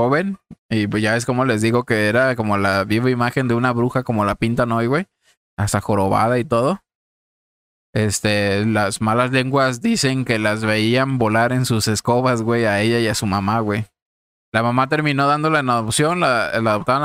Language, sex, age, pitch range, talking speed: Spanish, male, 20-39, 105-130 Hz, 190 wpm